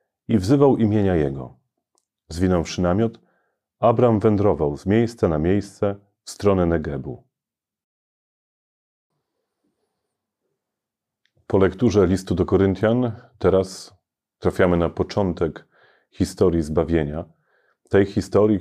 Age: 30-49